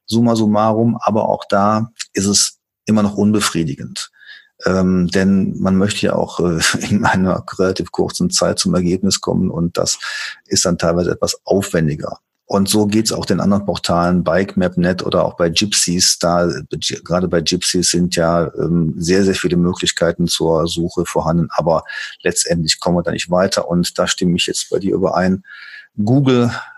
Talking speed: 170 wpm